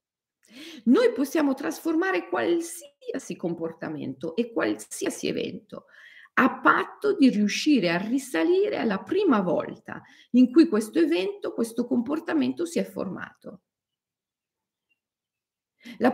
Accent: native